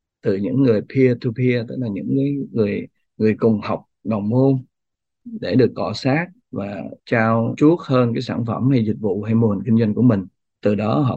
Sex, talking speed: male, 200 wpm